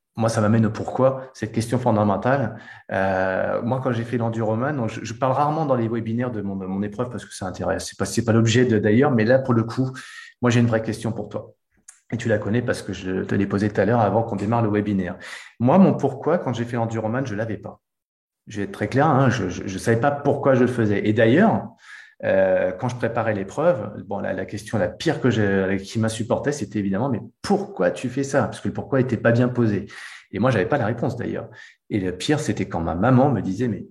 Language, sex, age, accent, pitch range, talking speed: French, male, 30-49, French, 105-130 Hz, 250 wpm